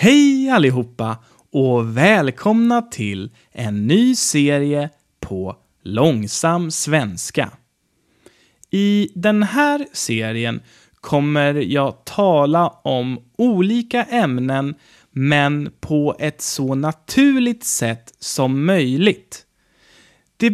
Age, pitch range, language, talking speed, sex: 30-49, 125-210 Hz, German, 90 wpm, male